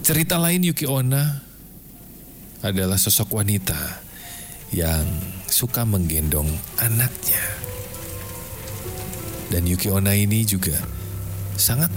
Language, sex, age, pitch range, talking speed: Indonesian, male, 40-59, 90-115 Hz, 75 wpm